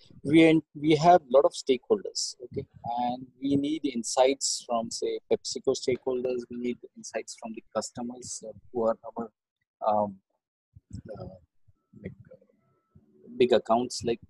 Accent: Indian